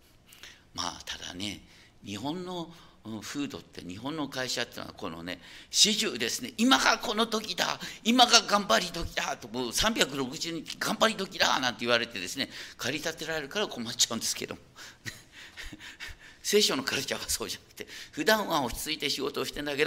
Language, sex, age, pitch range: Japanese, male, 50-69, 110-160 Hz